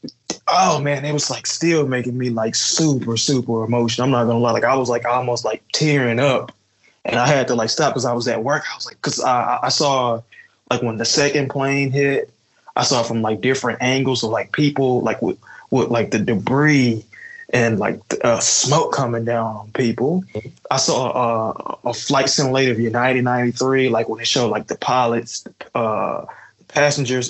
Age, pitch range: 20-39, 115-135 Hz